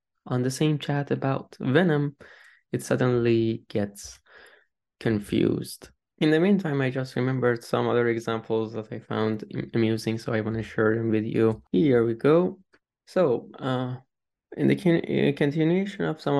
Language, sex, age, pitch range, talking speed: Persian, male, 20-39, 115-145 Hz, 155 wpm